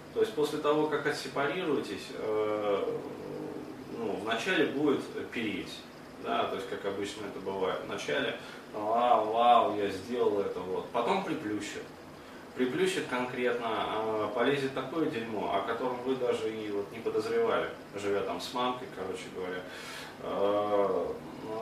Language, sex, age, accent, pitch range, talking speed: Russian, male, 20-39, native, 110-160 Hz, 130 wpm